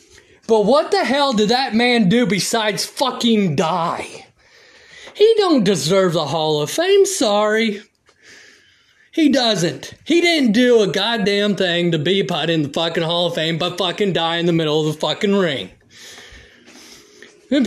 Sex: male